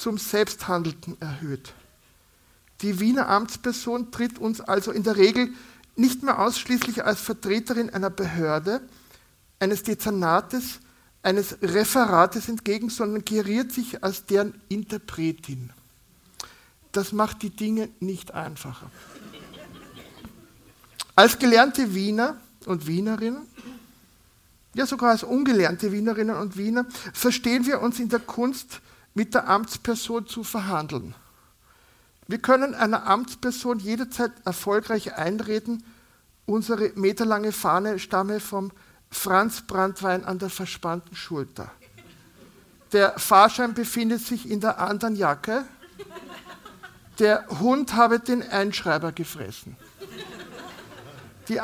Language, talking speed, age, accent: German, 105 wpm, 50-69, German